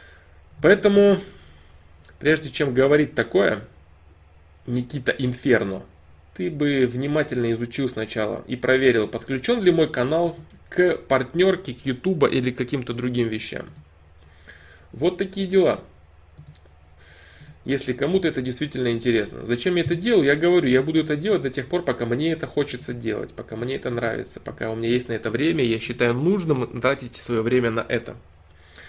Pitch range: 85-135 Hz